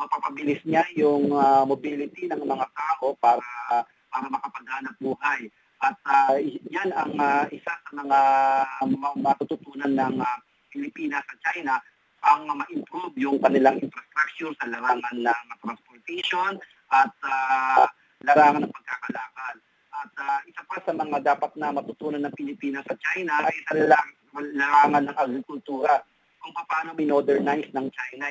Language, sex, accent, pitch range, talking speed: Filipino, male, native, 135-165 Hz, 140 wpm